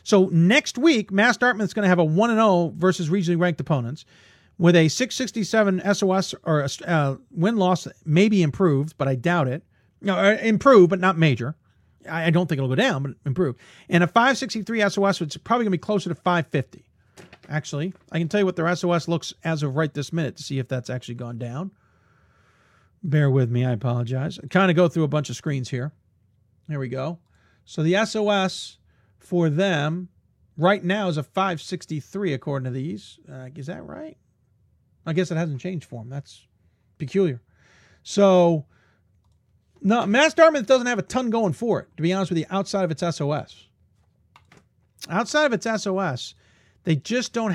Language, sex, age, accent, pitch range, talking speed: English, male, 40-59, American, 130-195 Hz, 185 wpm